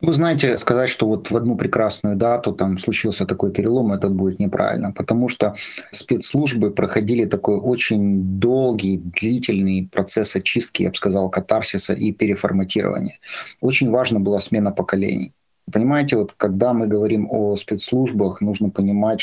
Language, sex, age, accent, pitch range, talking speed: Russian, male, 30-49, native, 100-110 Hz, 145 wpm